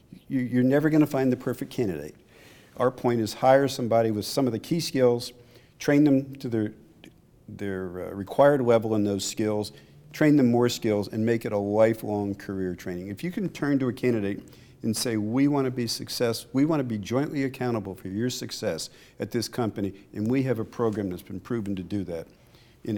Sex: male